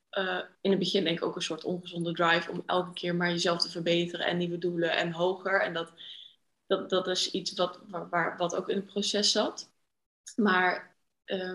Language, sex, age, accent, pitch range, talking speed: Dutch, female, 20-39, Dutch, 180-205 Hz, 190 wpm